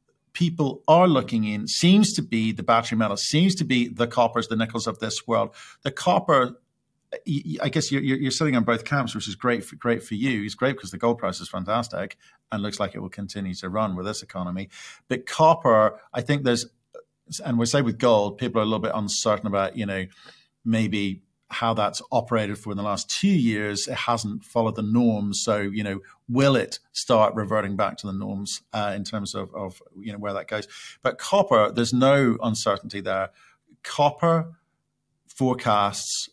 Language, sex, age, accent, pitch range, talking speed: English, male, 50-69, British, 105-125 Hz, 195 wpm